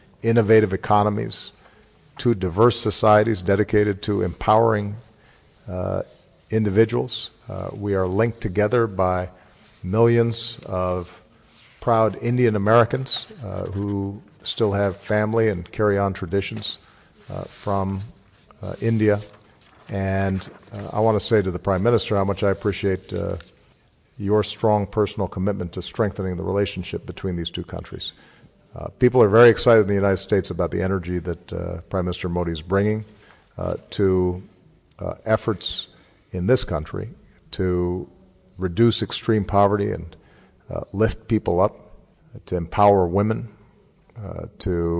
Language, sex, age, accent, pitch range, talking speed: Hindi, male, 50-69, American, 95-110 Hz, 135 wpm